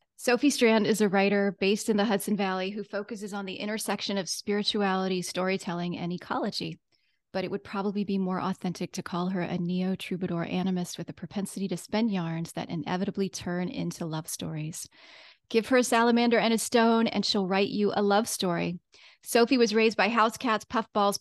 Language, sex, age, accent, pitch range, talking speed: English, female, 30-49, American, 185-225 Hz, 185 wpm